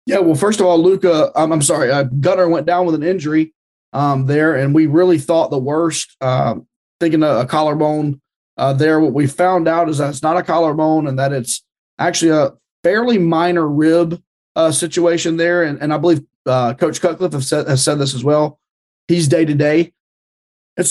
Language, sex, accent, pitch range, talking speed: English, male, American, 150-180 Hz, 200 wpm